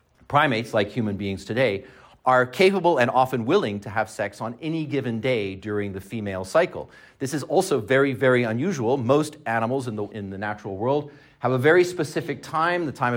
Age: 40-59